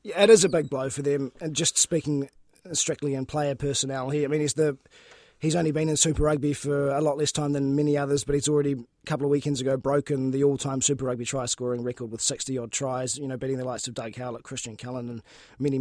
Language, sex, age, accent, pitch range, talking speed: English, male, 20-39, Australian, 130-150 Hz, 245 wpm